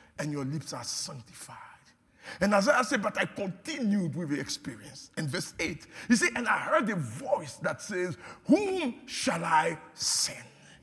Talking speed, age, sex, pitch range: 165 wpm, 50-69, male, 160-235 Hz